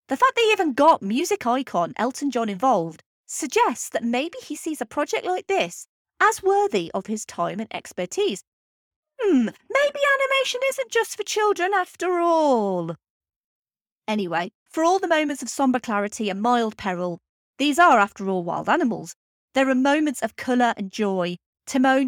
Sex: female